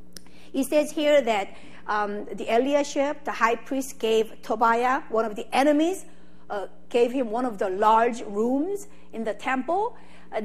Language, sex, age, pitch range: Korean, female, 50-69, 220-285 Hz